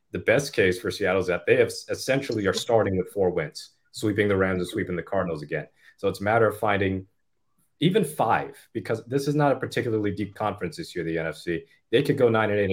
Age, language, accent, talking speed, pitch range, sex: 30-49, English, American, 230 wpm, 95-115 Hz, male